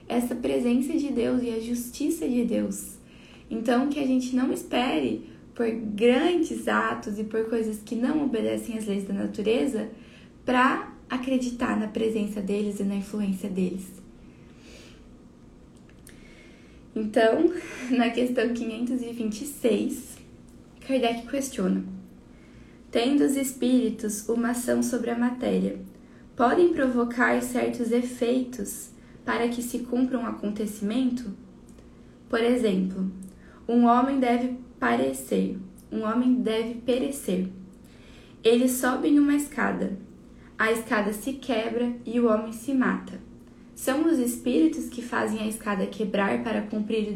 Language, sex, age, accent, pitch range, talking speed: Portuguese, female, 10-29, Brazilian, 210-250 Hz, 120 wpm